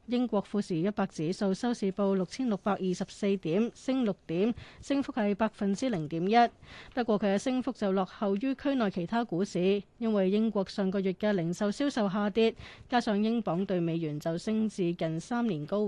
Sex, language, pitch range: female, Chinese, 180-230 Hz